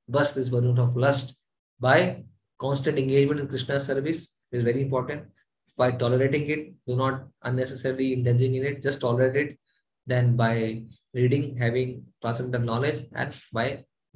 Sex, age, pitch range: male, 20-39, 115-130 Hz